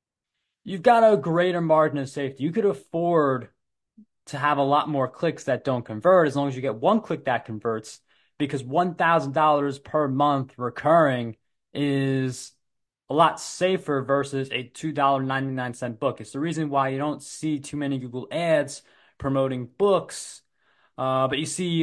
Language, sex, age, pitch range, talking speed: English, male, 20-39, 125-150 Hz, 160 wpm